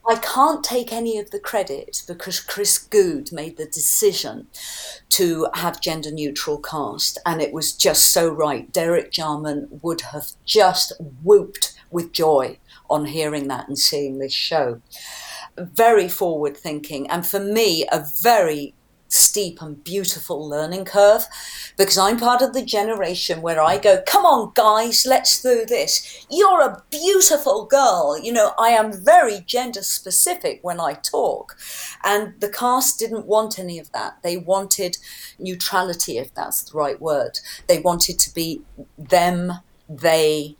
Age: 50-69